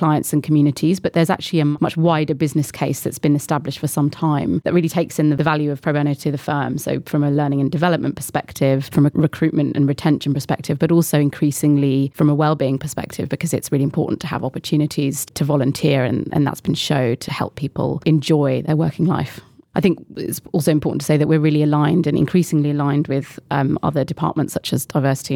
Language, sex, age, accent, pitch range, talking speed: English, female, 30-49, British, 145-160 Hz, 215 wpm